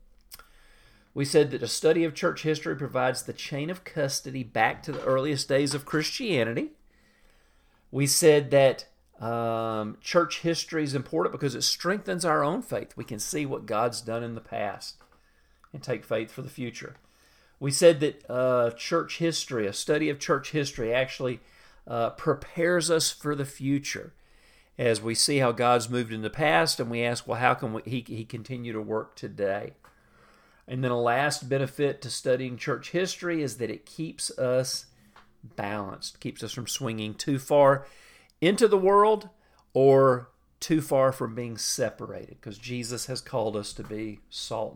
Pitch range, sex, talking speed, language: 120-155 Hz, male, 170 wpm, English